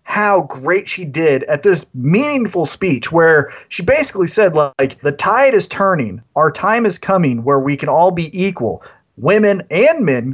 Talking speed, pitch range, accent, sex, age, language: 175 wpm, 140-200 Hz, American, male, 30-49, English